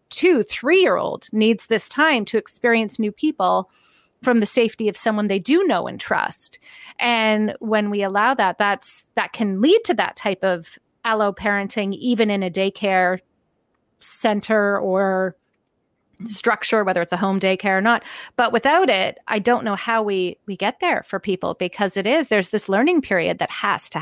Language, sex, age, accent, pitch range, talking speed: English, female, 30-49, American, 200-255 Hz, 175 wpm